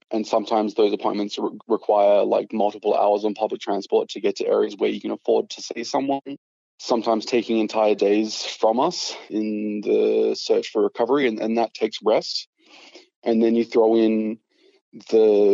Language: English